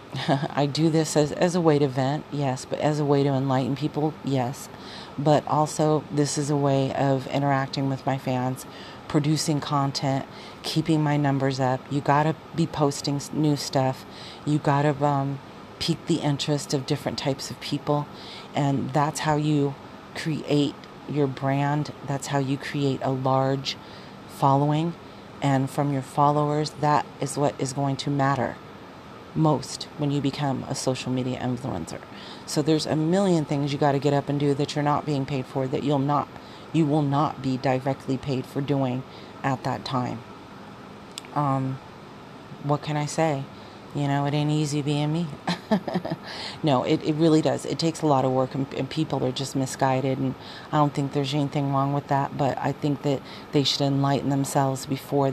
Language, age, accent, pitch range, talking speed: English, 40-59, American, 135-150 Hz, 180 wpm